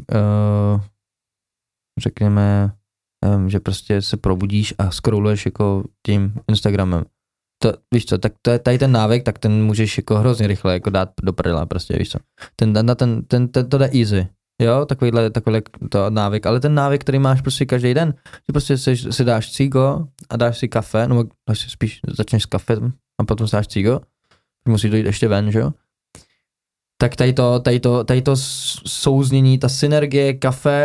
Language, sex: Czech, male